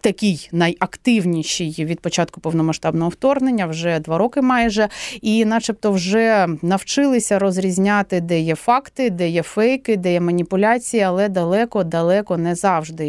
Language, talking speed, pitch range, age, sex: Ukrainian, 130 wpm, 180-230 Hz, 30-49, female